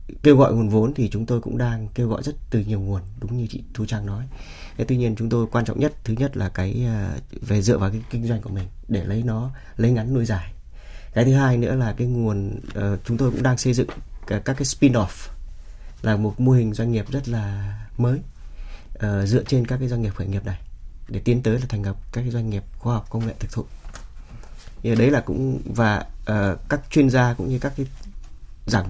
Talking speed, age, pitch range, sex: 235 wpm, 20-39, 100-125 Hz, male